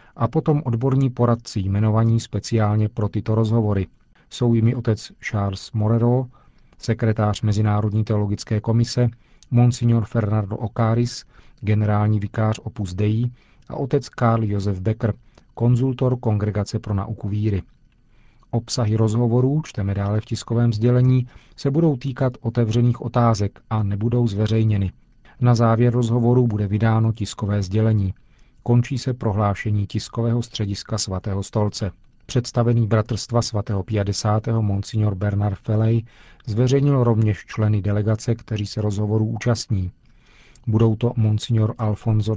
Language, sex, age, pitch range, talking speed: Czech, male, 40-59, 105-120 Hz, 120 wpm